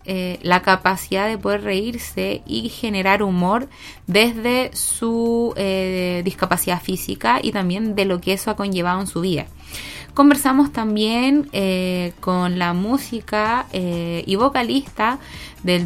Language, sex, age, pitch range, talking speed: Spanish, female, 20-39, 185-250 Hz, 130 wpm